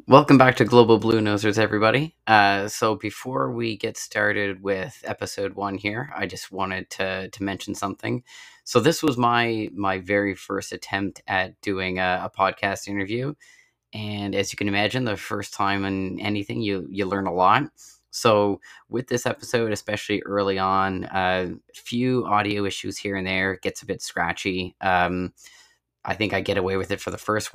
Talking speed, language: 180 wpm, English